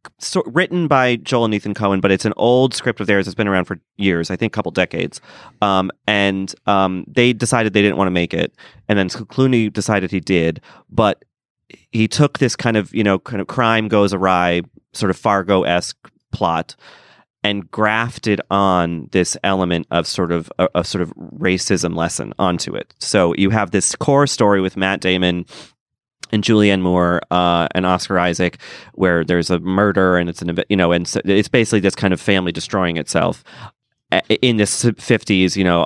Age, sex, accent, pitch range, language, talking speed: 30-49, male, American, 90-110 Hz, English, 190 wpm